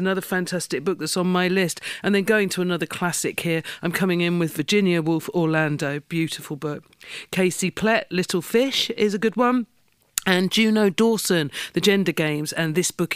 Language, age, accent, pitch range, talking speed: English, 50-69, British, 155-185 Hz, 180 wpm